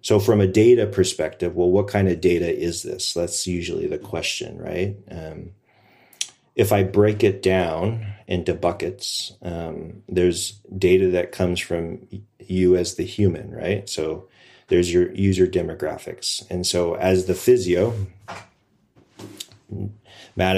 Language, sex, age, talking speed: English, male, 30-49, 135 wpm